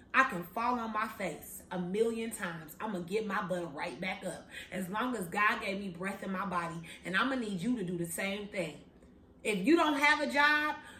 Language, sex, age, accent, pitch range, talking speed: English, female, 30-49, American, 205-275 Hz, 245 wpm